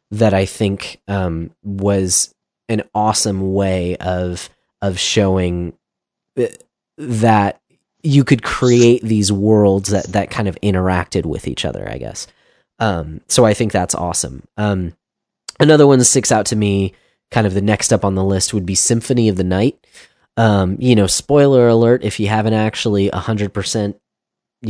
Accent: American